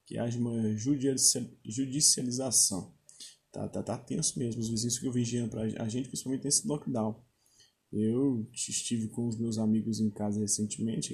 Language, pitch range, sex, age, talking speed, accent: Portuguese, 110-125 Hz, male, 20-39, 150 wpm, Brazilian